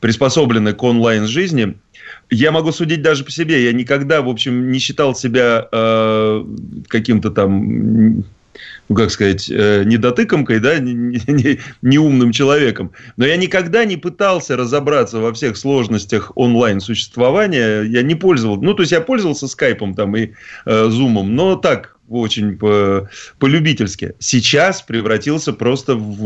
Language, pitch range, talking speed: Russian, 110-135 Hz, 140 wpm